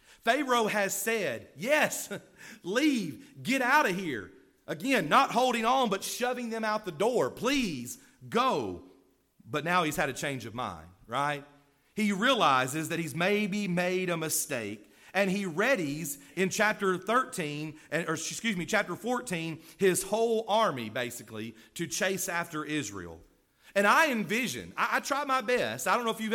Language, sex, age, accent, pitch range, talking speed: English, male, 40-59, American, 155-210 Hz, 160 wpm